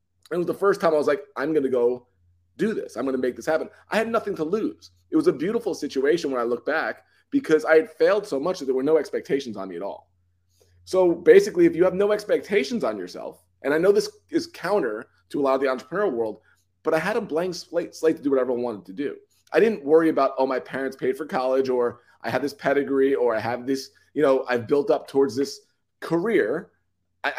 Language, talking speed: English, 250 wpm